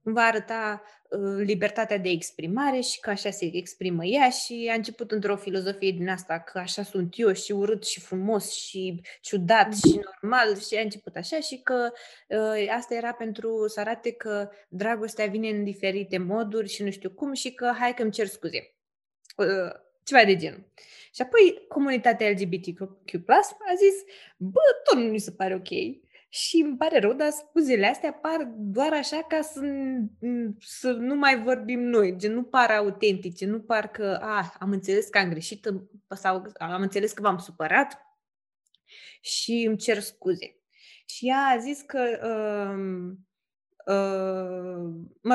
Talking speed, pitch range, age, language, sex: 160 wpm, 195-245 Hz, 20-39, Romanian, female